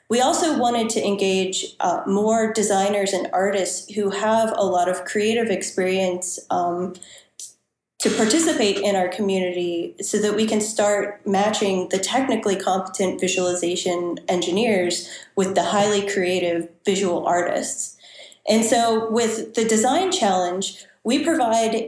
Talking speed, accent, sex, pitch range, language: 130 wpm, American, female, 190-235 Hz, English